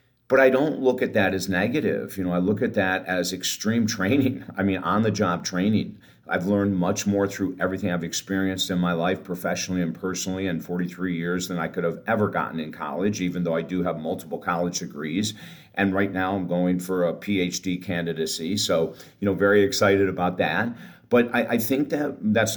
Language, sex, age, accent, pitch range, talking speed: English, male, 50-69, American, 90-100 Hz, 205 wpm